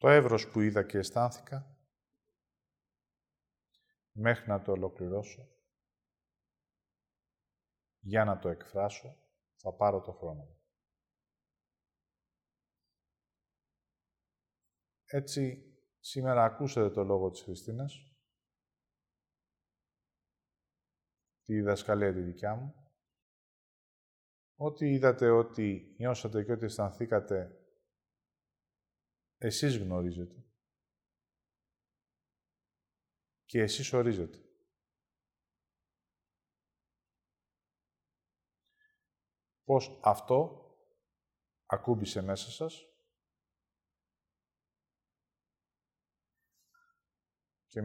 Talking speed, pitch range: 60 wpm, 95-135 Hz